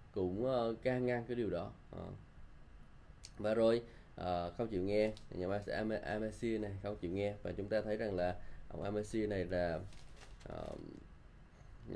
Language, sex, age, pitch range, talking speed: Vietnamese, male, 10-29, 95-120 Hz, 180 wpm